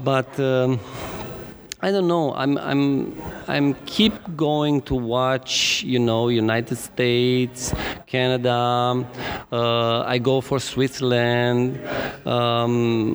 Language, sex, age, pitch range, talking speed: English, male, 40-59, 115-135 Hz, 105 wpm